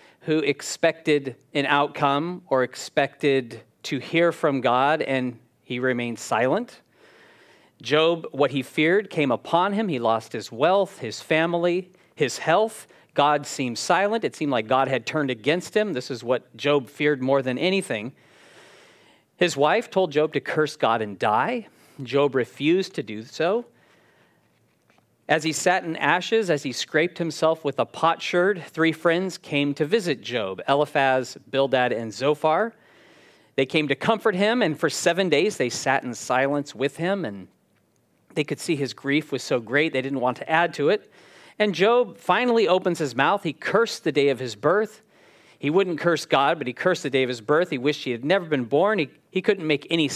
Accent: American